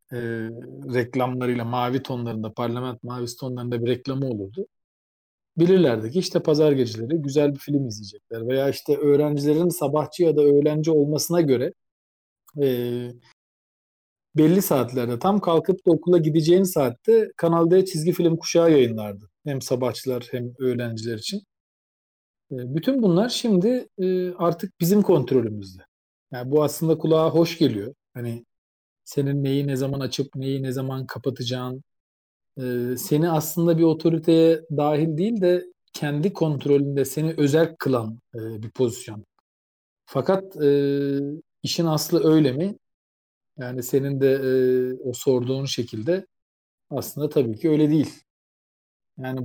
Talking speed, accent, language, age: 125 wpm, native, Turkish, 40-59